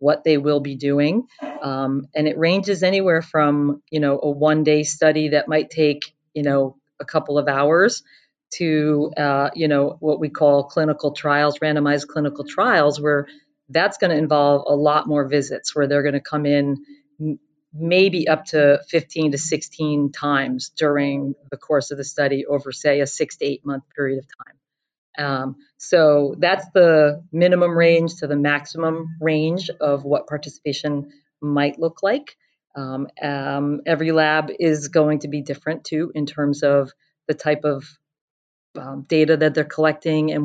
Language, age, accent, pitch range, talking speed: English, 40-59, American, 145-155 Hz, 165 wpm